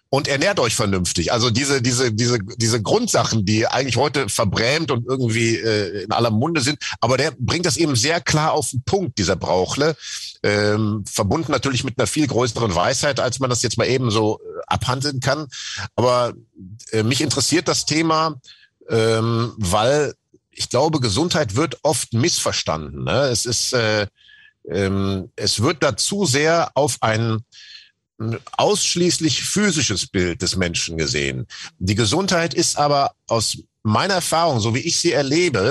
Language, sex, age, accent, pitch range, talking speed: German, male, 50-69, German, 110-155 Hz, 160 wpm